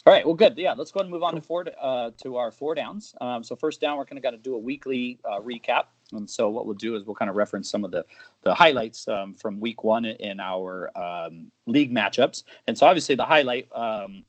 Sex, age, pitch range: male, 30-49, 100-125 Hz